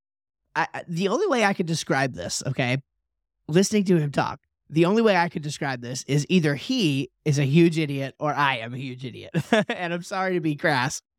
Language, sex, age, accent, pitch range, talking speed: English, male, 30-49, American, 135-170 Hz, 210 wpm